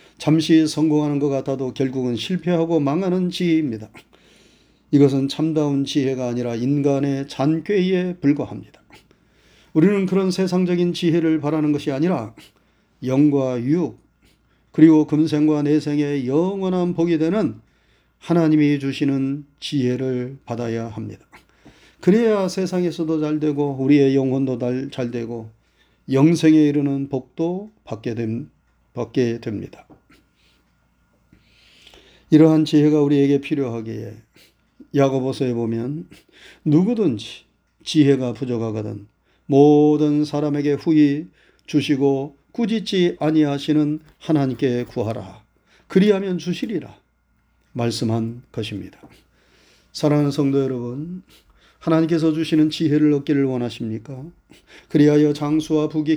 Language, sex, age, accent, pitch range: Korean, male, 40-59, native, 130-165 Hz